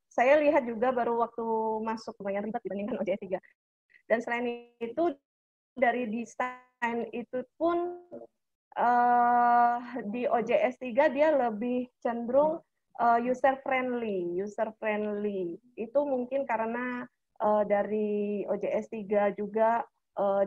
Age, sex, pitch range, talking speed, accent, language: 20-39, female, 210-245 Hz, 110 wpm, native, Indonesian